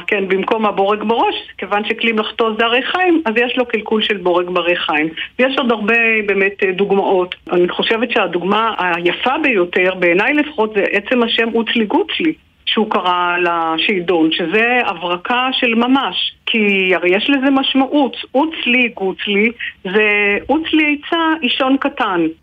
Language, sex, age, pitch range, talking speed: Hebrew, female, 50-69, 200-250 Hz, 145 wpm